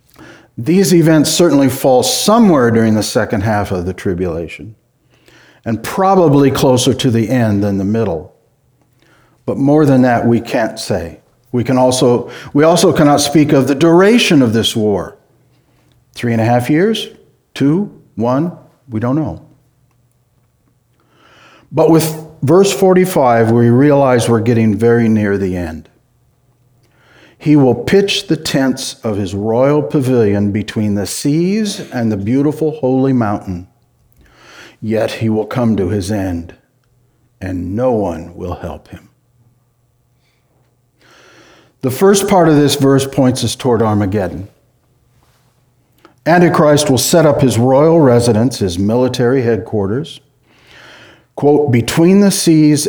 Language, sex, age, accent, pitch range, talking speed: English, male, 60-79, American, 115-145 Hz, 130 wpm